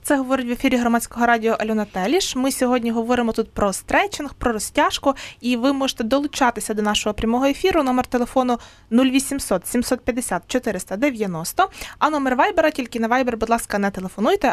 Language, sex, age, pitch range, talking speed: Ukrainian, female, 20-39, 215-280 Hz, 160 wpm